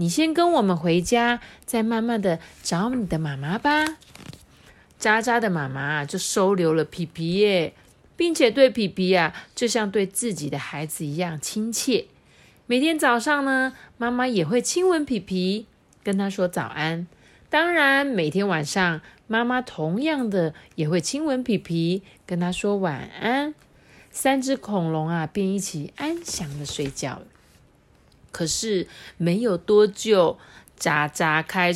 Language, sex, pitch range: Chinese, female, 170-240 Hz